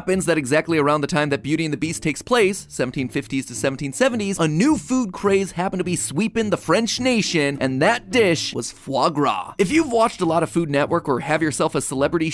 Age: 30-49